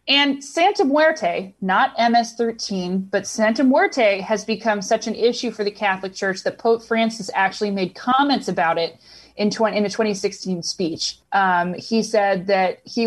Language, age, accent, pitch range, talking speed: English, 30-49, American, 195-240 Hz, 165 wpm